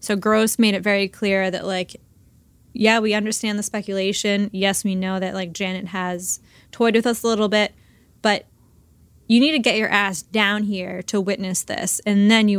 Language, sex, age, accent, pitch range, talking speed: English, female, 10-29, American, 190-220 Hz, 195 wpm